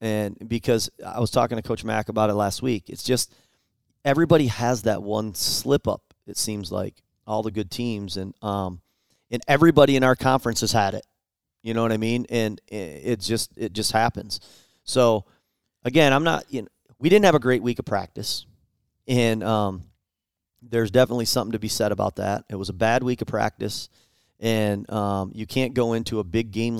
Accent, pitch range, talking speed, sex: American, 105-120 Hz, 195 wpm, male